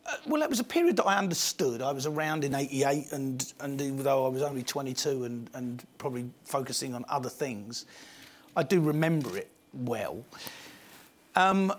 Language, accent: English, British